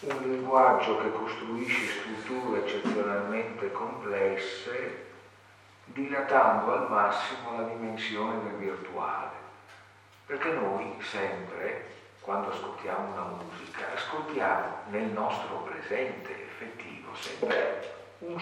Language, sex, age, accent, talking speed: Italian, male, 50-69, native, 90 wpm